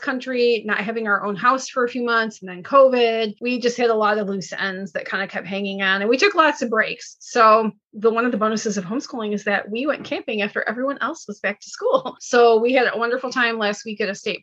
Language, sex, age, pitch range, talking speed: English, female, 30-49, 205-245 Hz, 265 wpm